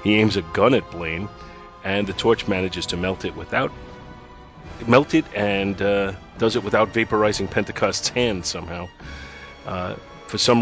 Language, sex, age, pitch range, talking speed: English, male, 30-49, 90-110 Hz, 160 wpm